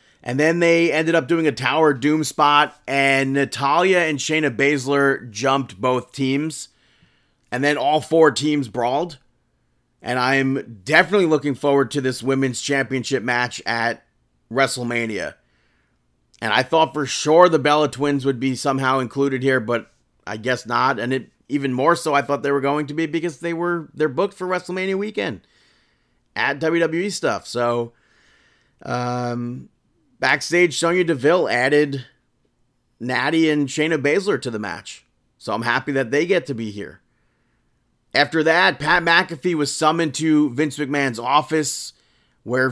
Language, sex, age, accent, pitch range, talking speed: English, male, 30-49, American, 125-155 Hz, 155 wpm